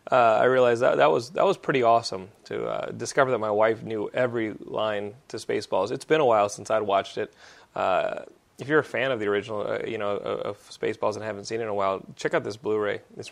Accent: American